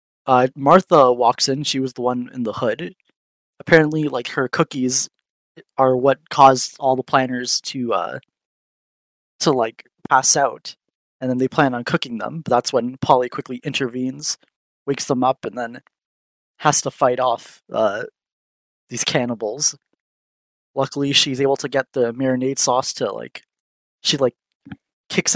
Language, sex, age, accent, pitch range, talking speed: English, male, 20-39, American, 125-145 Hz, 155 wpm